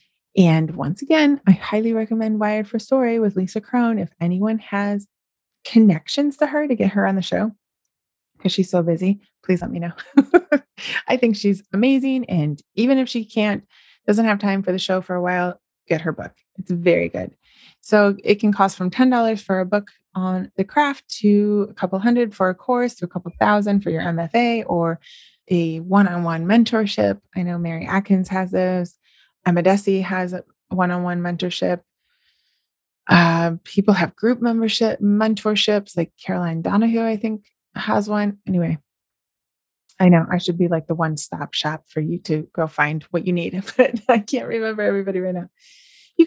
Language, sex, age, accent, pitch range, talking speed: English, female, 20-39, American, 175-225 Hz, 175 wpm